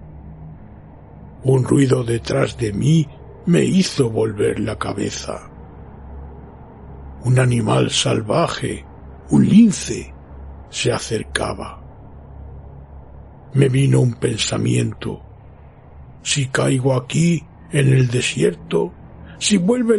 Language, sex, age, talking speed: Spanish, male, 60-79, 85 wpm